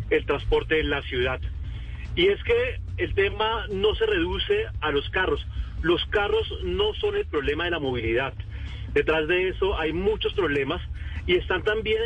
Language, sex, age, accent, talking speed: Spanish, male, 40-59, Colombian, 170 wpm